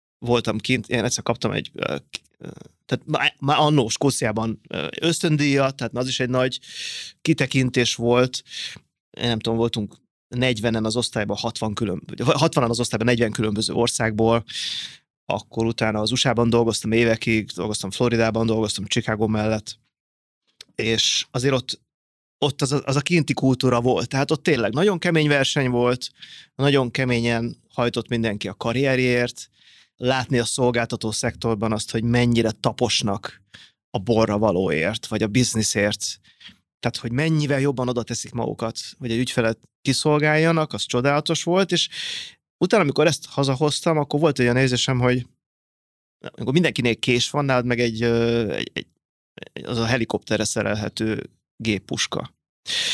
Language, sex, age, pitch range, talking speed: Hungarian, male, 30-49, 115-135 Hz, 135 wpm